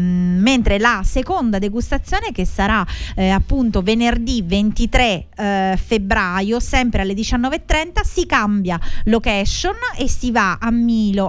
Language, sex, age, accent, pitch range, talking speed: Italian, female, 20-39, native, 195-245 Hz, 120 wpm